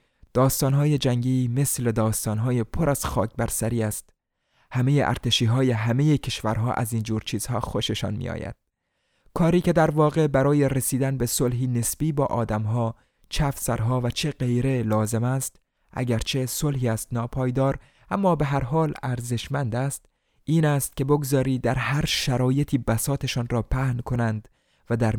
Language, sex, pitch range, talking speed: Persian, male, 115-140 Hz, 145 wpm